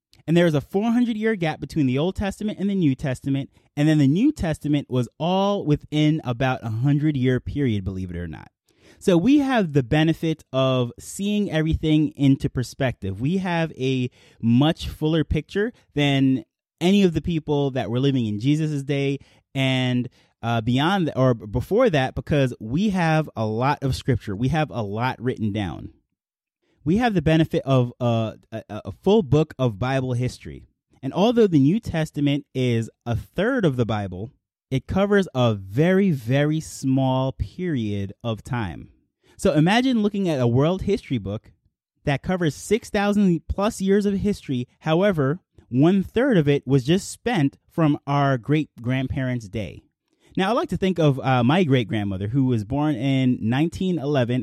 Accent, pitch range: American, 125-165 Hz